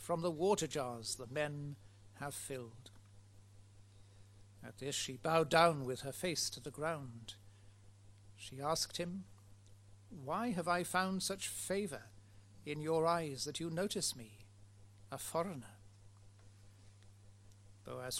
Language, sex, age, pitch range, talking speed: English, male, 60-79, 100-165 Hz, 125 wpm